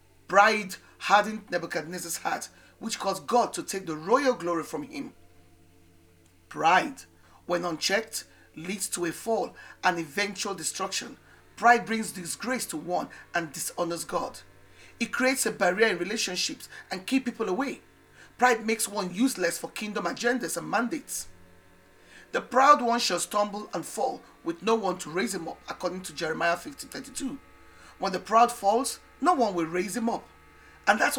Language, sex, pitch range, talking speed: English, male, 170-230 Hz, 155 wpm